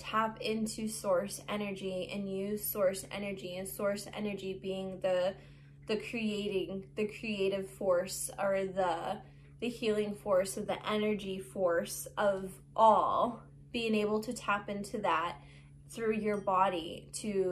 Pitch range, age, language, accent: 185-220 Hz, 20-39, English, American